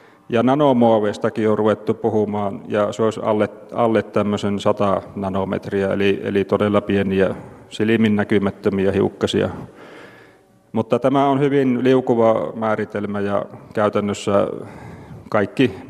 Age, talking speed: 40-59, 110 wpm